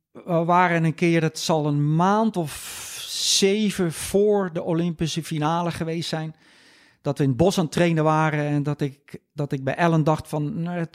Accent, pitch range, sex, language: Dutch, 135-170 Hz, male, Dutch